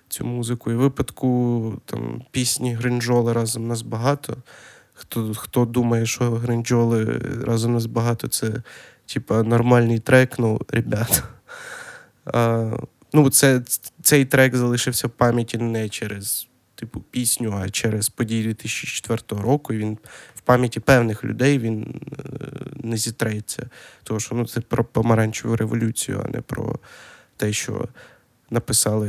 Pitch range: 115-130 Hz